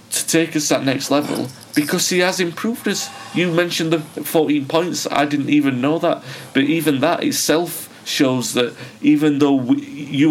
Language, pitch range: English, 125-160 Hz